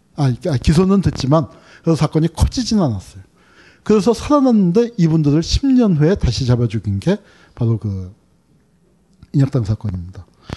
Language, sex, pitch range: Korean, male, 135-200 Hz